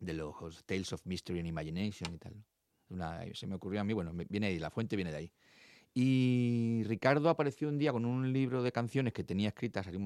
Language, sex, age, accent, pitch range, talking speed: Spanish, male, 40-59, Spanish, 95-125 Hz, 225 wpm